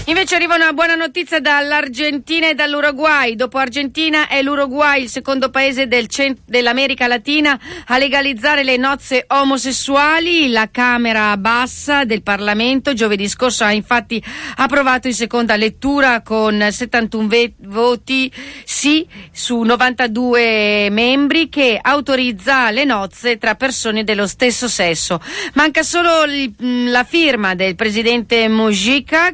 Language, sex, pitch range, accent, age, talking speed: Italian, female, 220-280 Hz, native, 40-59, 125 wpm